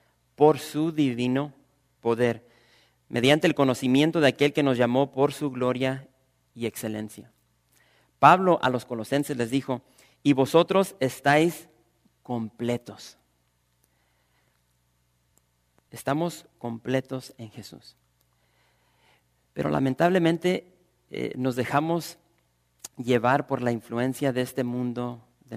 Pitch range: 115-140 Hz